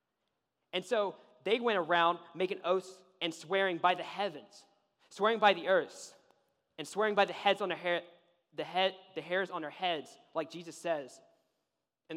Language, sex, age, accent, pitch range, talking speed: English, male, 20-39, American, 160-195 Hz, 170 wpm